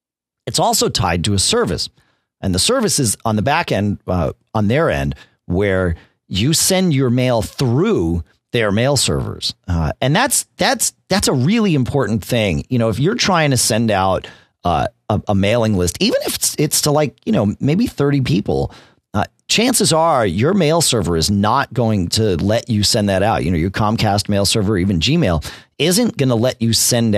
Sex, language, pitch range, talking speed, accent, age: male, English, 95-135 Hz, 195 wpm, American, 40-59